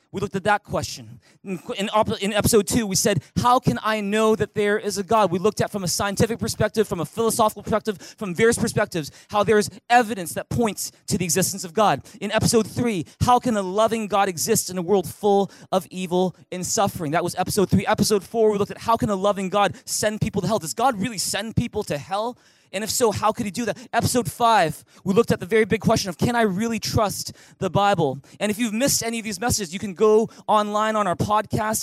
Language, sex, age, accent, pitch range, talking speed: English, male, 20-39, American, 185-220 Hz, 235 wpm